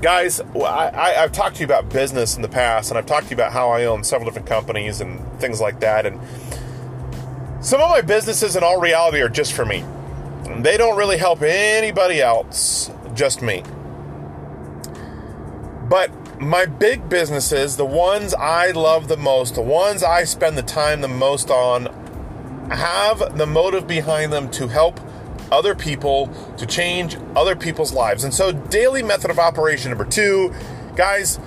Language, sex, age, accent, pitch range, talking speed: English, male, 30-49, American, 120-180 Hz, 170 wpm